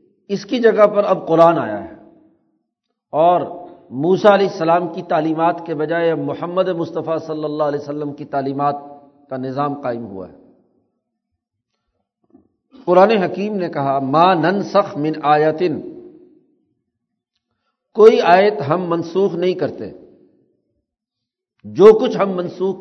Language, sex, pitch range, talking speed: Urdu, male, 155-210 Hz, 125 wpm